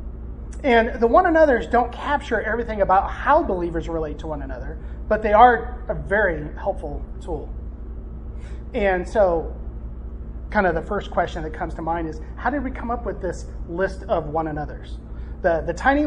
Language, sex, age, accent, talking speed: English, male, 30-49, American, 175 wpm